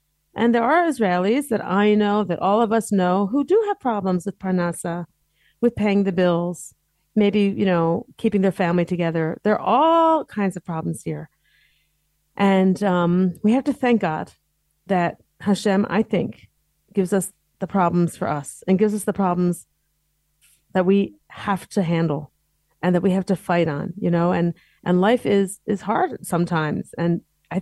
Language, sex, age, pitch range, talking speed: English, female, 40-59, 165-210 Hz, 175 wpm